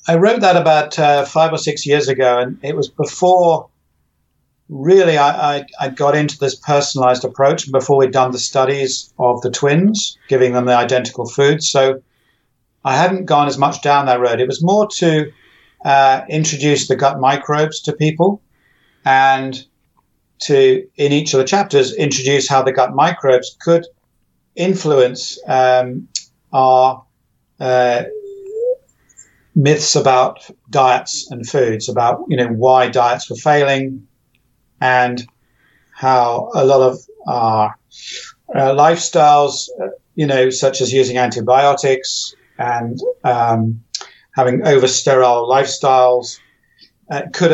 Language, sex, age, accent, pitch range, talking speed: English, male, 50-69, British, 125-150 Hz, 135 wpm